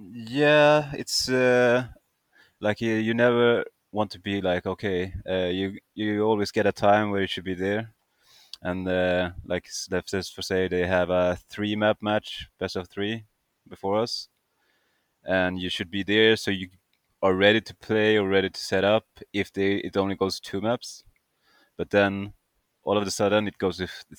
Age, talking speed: 20-39, 180 wpm